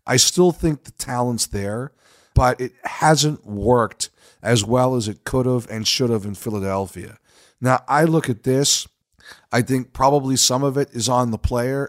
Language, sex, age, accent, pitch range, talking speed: English, male, 40-59, American, 105-130 Hz, 180 wpm